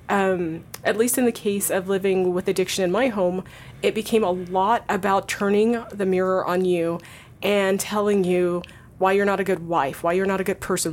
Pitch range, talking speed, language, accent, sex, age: 190-225 Hz, 210 wpm, English, American, female, 30-49